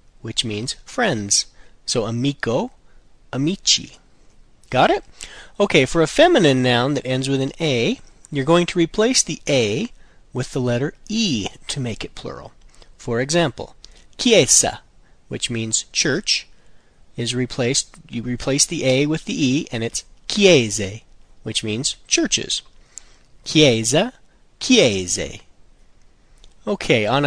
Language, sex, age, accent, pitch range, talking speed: English, male, 40-59, American, 115-165 Hz, 125 wpm